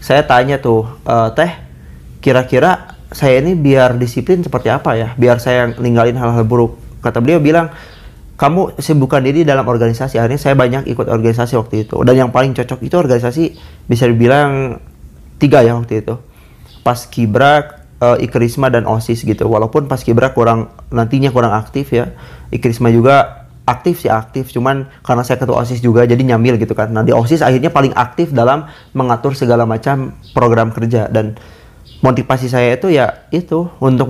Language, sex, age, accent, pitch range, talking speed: Indonesian, male, 30-49, native, 115-145 Hz, 165 wpm